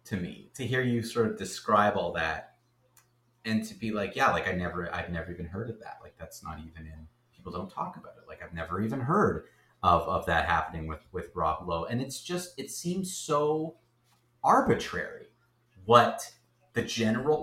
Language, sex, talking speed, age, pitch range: English, male, 195 wpm, 30-49, 95-130 Hz